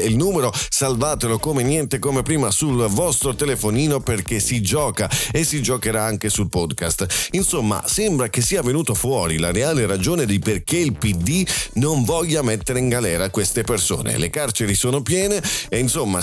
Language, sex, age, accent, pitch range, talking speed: Italian, male, 40-59, native, 95-130 Hz, 165 wpm